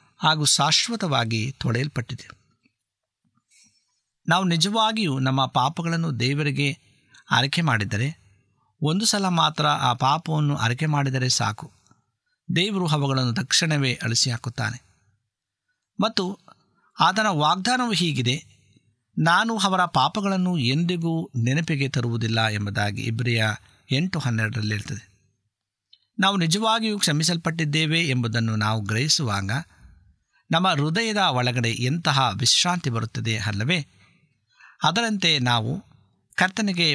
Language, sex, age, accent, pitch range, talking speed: Kannada, male, 50-69, native, 115-165 Hz, 90 wpm